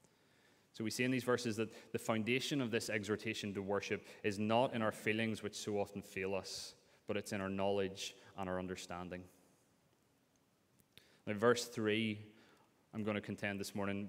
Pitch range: 95-115 Hz